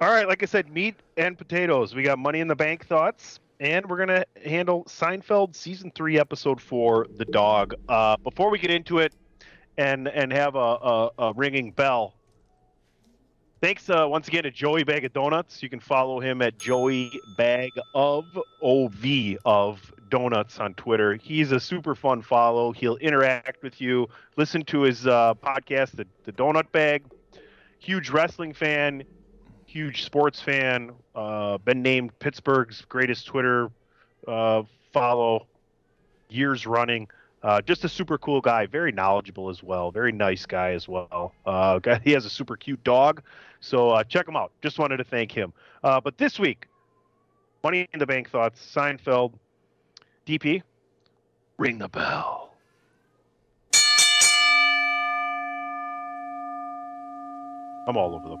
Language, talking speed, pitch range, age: English, 150 wpm, 120-165 Hz, 30-49